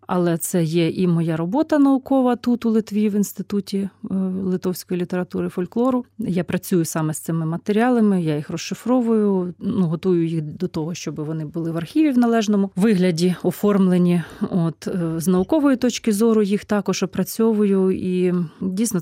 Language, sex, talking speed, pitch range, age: Russian, female, 150 wpm, 170-205 Hz, 30-49